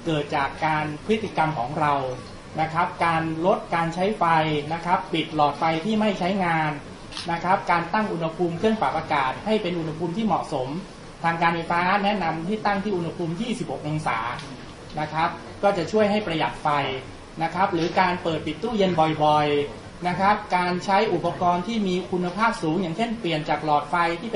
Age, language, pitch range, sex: 20-39, Thai, 160-200 Hz, male